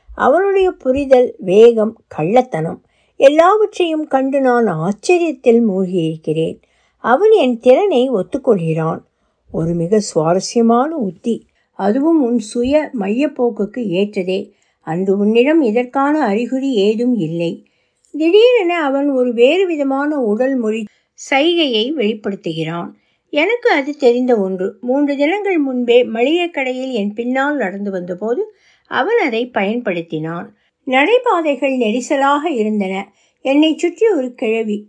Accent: native